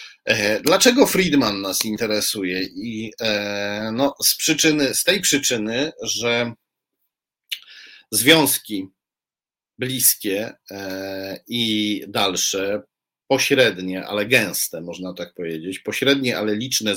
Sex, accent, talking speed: male, native, 90 wpm